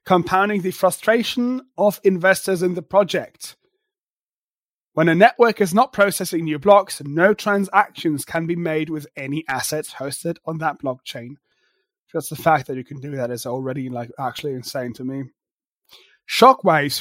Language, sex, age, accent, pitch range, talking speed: English, male, 30-49, British, 155-210 Hz, 155 wpm